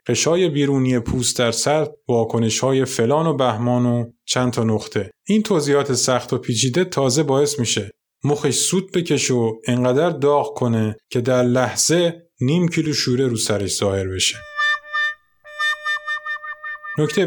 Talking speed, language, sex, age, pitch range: 140 wpm, Persian, male, 20-39, 115-165 Hz